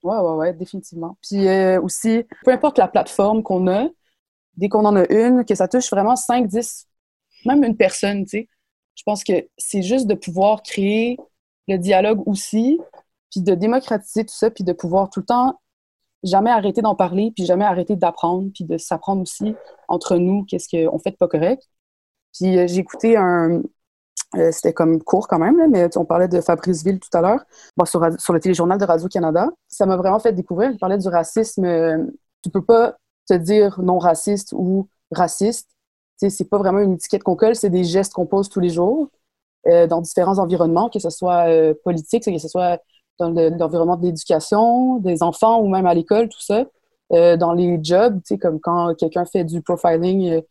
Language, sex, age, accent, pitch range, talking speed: French, female, 20-39, Canadian, 175-215 Hz, 205 wpm